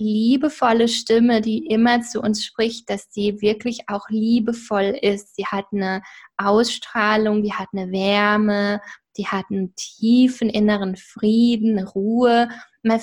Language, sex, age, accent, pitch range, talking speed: German, female, 20-39, German, 205-235 Hz, 135 wpm